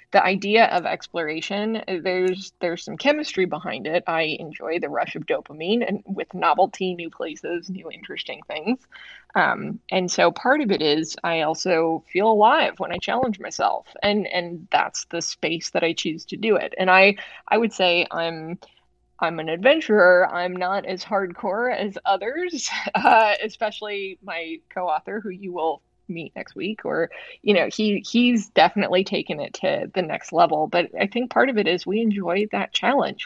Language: English